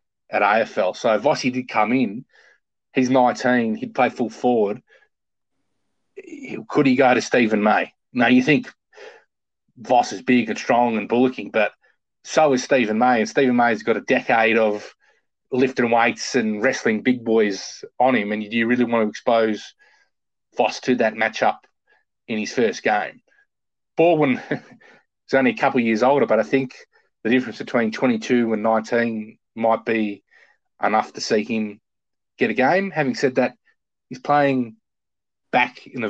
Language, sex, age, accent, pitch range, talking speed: English, male, 30-49, Australian, 110-130 Hz, 165 wpm